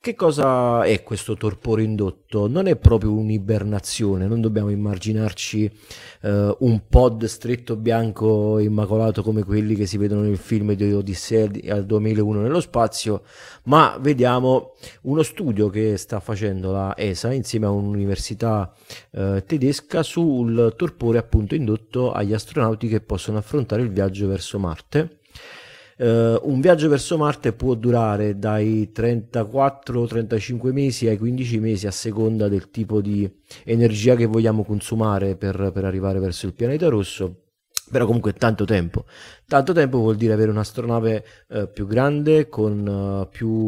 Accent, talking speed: native, 140 wpm